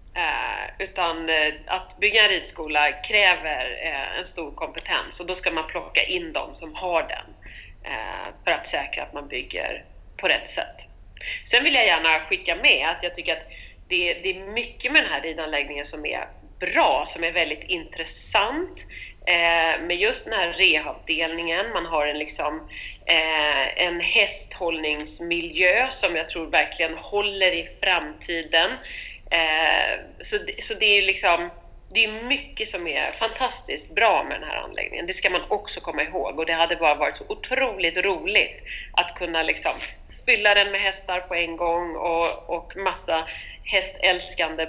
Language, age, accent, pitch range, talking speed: Swedish, 30-49, native, 165-205 Hz, 155 wpm